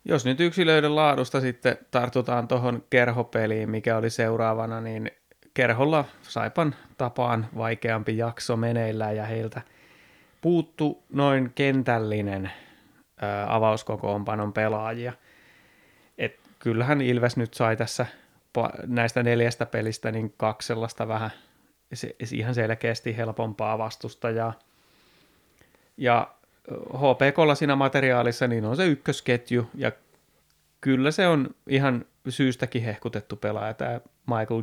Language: Finnish